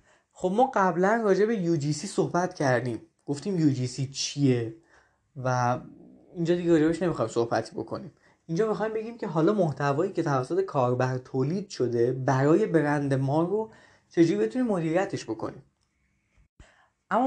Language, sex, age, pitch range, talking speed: Persian, male, 20-39, 135-185 Hz, 130 wpm